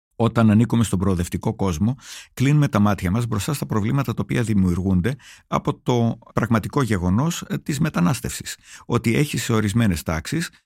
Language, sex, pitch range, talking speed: Greek, male, 90-120 Hz, 140 wpm